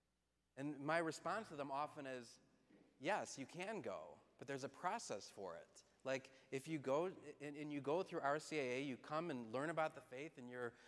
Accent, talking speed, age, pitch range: American, 200 wpm, 30-49, 120-160 Hz